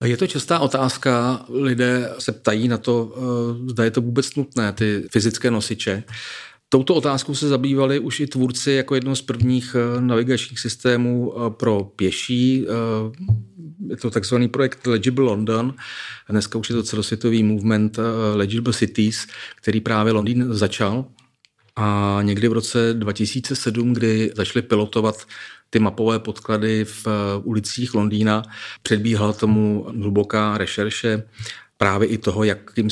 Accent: native